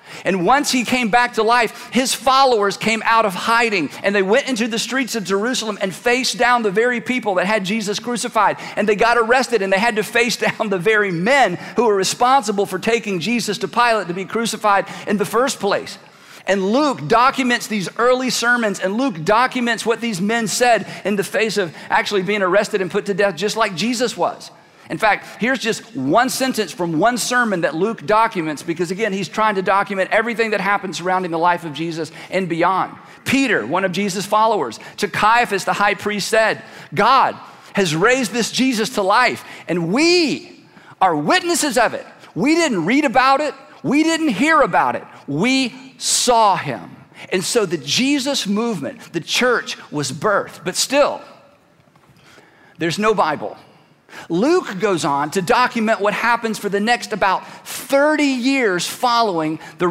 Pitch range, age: 195-245 Hz, 50-69